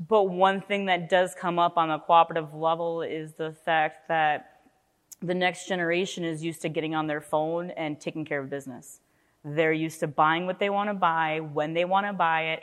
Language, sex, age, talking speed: English, female, 20-39, 215 wpm